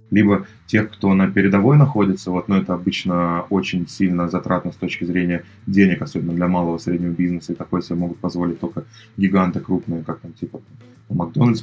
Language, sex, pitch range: Russian, male, 90-105 Hz